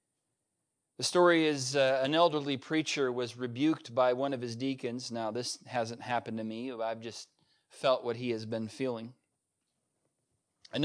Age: 30-49